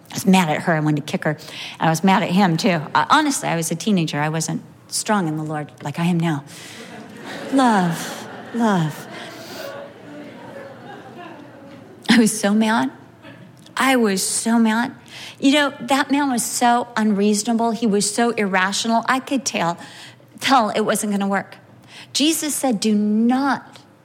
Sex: female